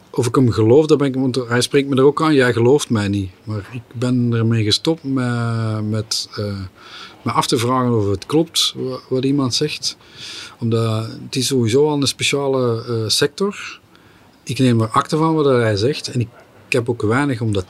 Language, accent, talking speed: Dutch, Dutch, 205 wpm